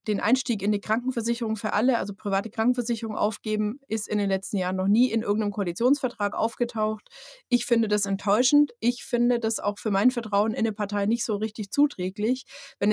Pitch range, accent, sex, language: 200-235 Hz, German, female, German